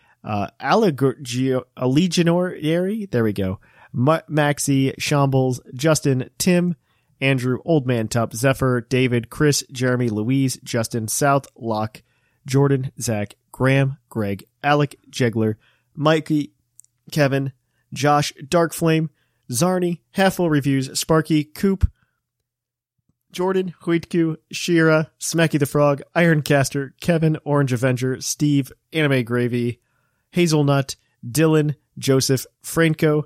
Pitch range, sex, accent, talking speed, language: 115-145 Hz, male, American, 105 wpm, English